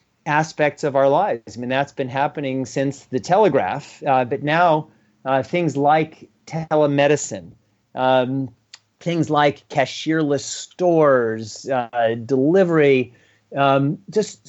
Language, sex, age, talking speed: English, male, 30-49, 115 wpm